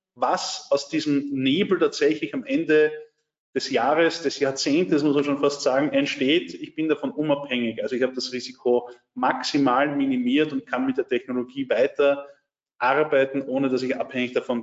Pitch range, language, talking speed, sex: 130-180 Hz, German, 165 wpm, male